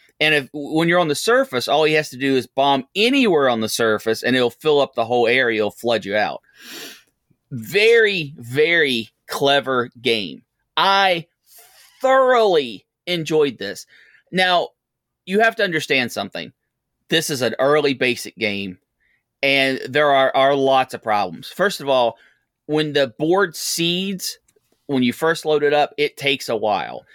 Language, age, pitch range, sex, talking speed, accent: English, 30-49, 130-170 Hz, male, 160 wpm, American